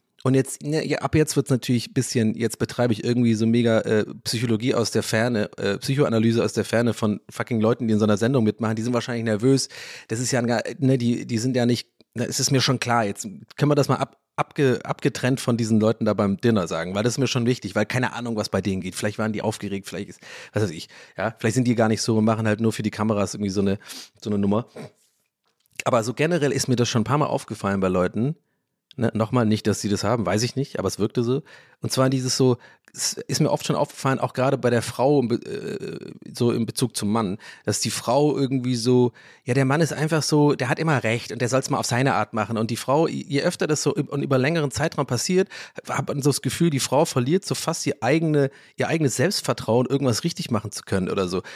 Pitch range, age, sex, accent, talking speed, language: 115-145 Hz, 30-49, male, German, 250 wpm, German